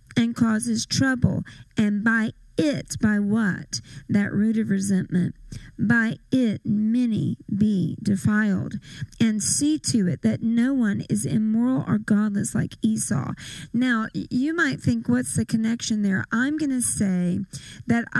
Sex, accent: female, American